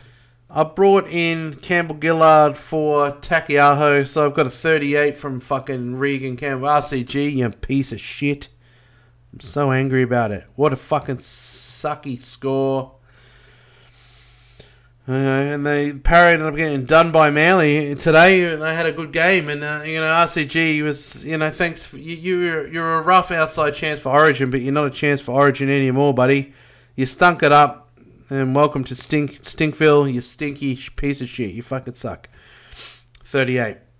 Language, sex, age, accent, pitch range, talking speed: English, male, 30-49, Australian, 130-160 Hz, 155 wpm